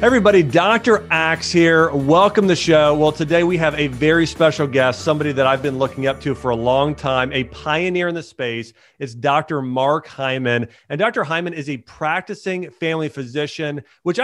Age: 40-59